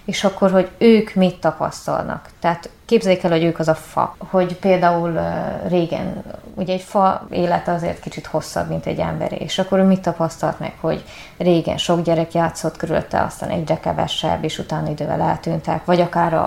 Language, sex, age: Hungarian, female, 20-39